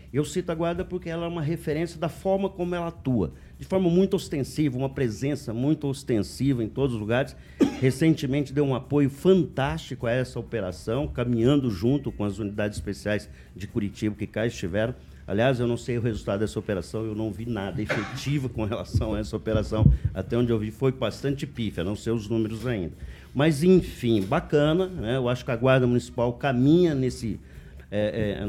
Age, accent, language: 50-69, Brazilian, Portuguese